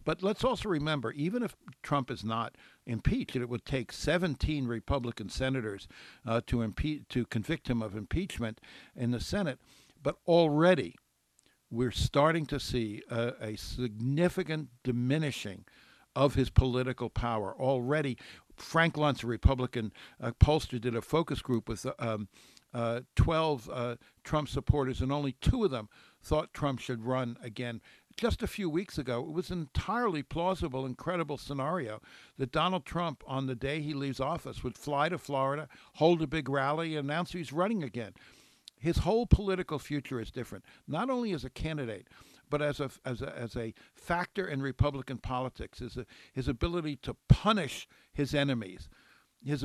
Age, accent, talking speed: 60-79, American, 160 wpm